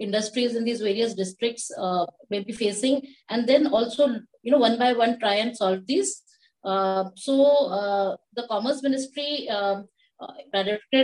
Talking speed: 150 wpm